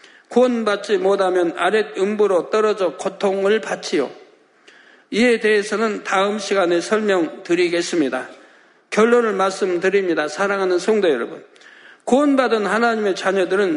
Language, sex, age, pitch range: Korean, male, 50-69, 190-240 Hz